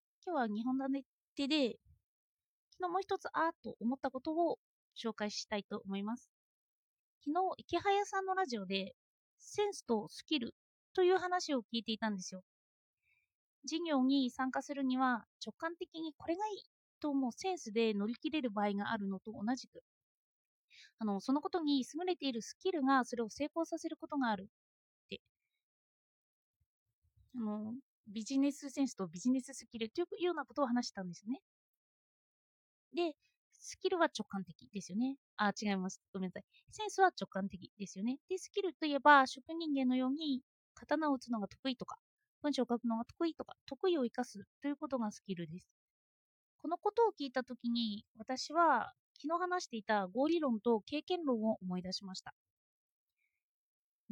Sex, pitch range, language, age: female, 220-320 Hz, Japanese, 30-49